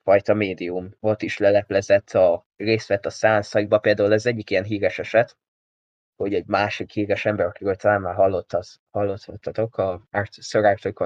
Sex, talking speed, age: male, 140 wpm, 20-39